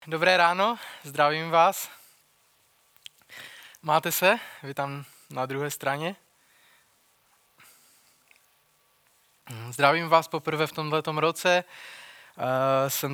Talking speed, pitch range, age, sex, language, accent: 80 wpm, 140-160 Hz, 20-39, male, Czech, native